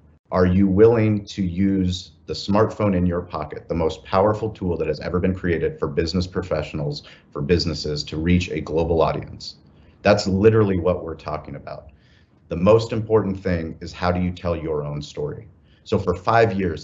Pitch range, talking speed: 80-90 Hz, 180 wpm